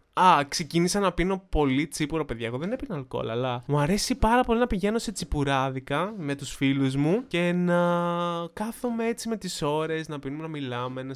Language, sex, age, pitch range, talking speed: Greek, male, 20-39, 125-180 Hz, 195 wpm